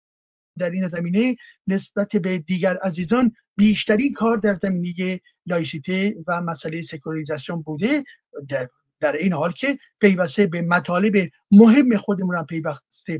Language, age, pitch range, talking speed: Persian, 60-79, 160-205 Hz, 125 wpm